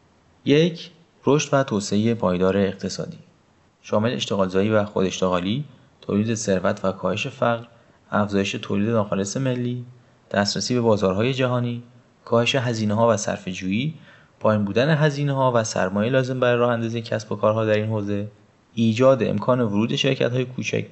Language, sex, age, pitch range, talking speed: Persian, male, 30-49, 100-125 Hz, 130 wpm